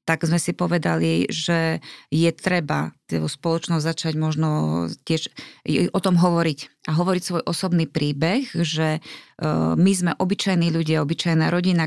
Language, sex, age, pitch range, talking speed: Slovak, female, 30-49, 150-175 Hz, 130 wpm